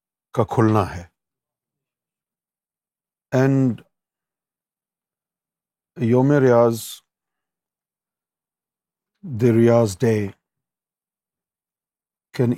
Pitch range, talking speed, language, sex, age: 110-125 Hz, 50 wpm, Urdu, male, 50-69